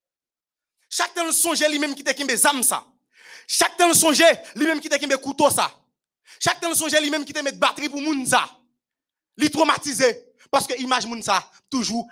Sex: male